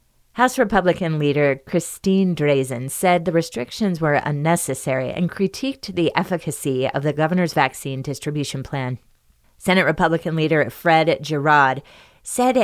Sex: female